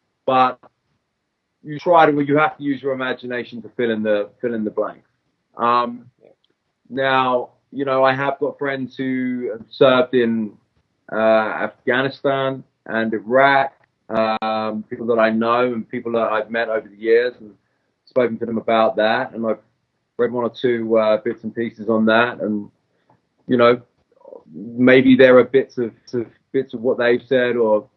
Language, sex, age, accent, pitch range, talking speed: English, male, 20-39, British, 110-130 Hz, 165 wpm